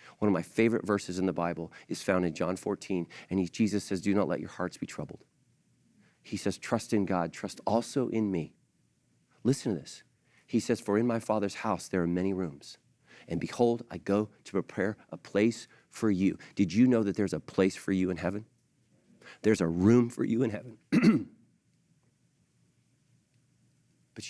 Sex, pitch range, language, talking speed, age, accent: male, 95-120 Hz, English, 185 wpm, 40-59, American